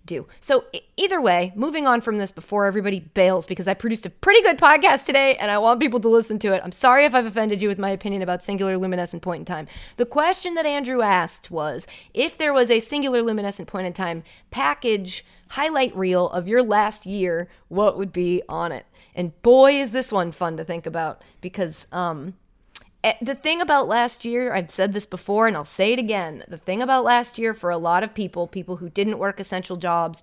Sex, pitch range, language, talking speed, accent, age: female, 180-245 Hz, English, 220 wpm, American, 30-49